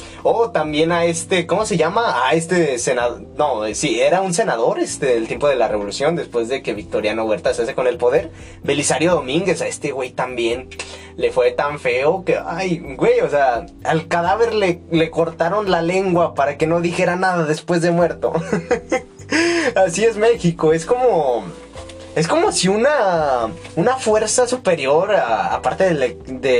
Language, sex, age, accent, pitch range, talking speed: Spanish, male, 20-39, Mexican, 145-215 Hz, 170 wpm